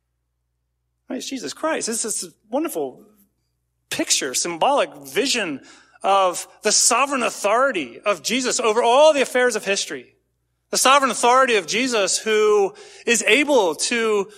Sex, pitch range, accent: male, 190-260 Hz, American